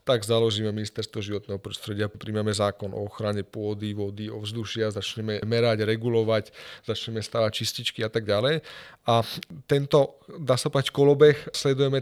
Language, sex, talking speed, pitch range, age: Slovak, male, 135 wpm, 110-135 Hz, 40-59